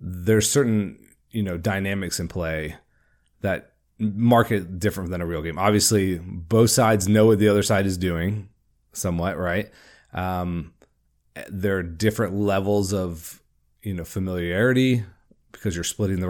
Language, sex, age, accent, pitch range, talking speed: English, male, 30-49, American, 85-110 Hz, 145 wpm